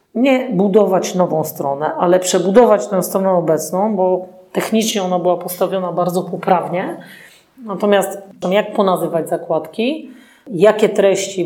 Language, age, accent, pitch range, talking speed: Polish, 40-59, native, 175-205 Hz, 115 wpm